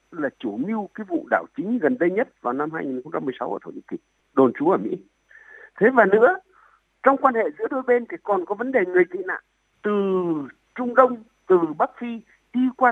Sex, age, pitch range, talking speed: male, 60-79, 205-315 Hz, 215 wpm